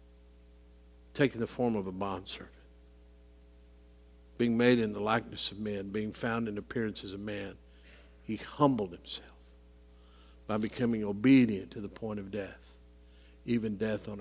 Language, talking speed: English, 145 wpm